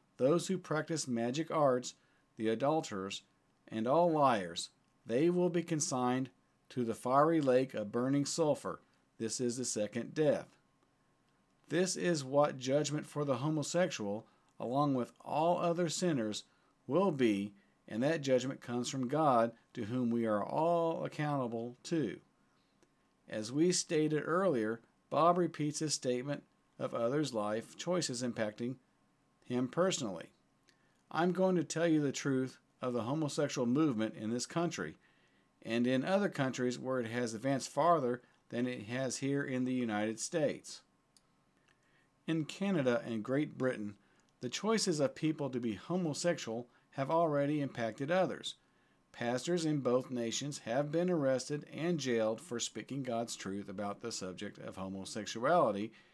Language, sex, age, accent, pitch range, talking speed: English, male, 50-69, American, 115-155 Hz, 140 wpm